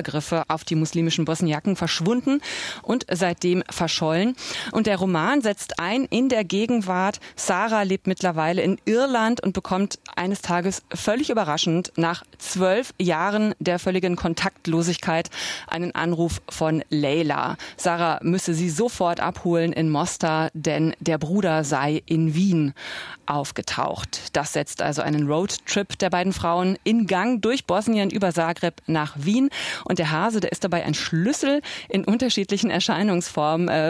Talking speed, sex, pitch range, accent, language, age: 140 wpm, female, 165-210 Hz, German, German, 30-49